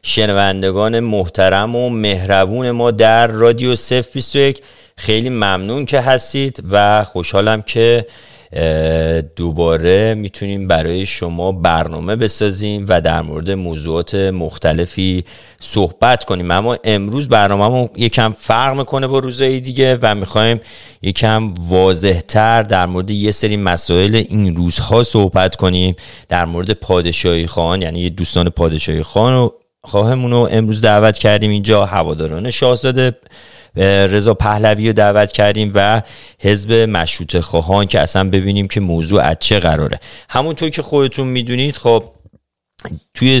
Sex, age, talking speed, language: male, 40-59, 125 wpm, Persian